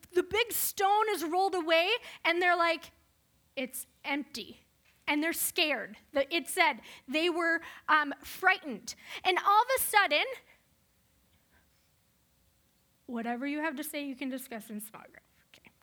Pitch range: 295-395 Hz